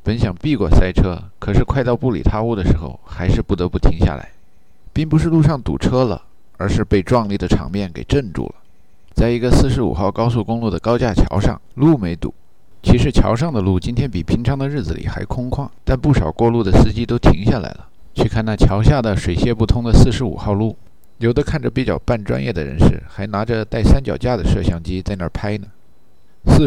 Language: Chinese